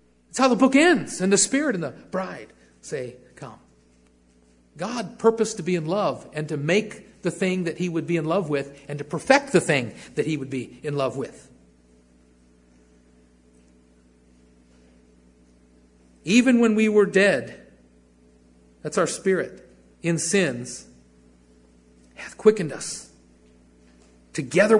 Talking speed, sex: 140 wpm, male